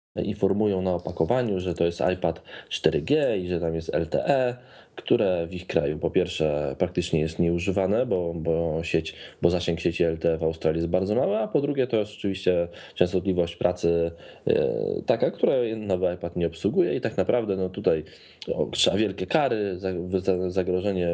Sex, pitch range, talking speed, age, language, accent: male, 85-100 Hz, 165 wpm, 20-39, Polish, native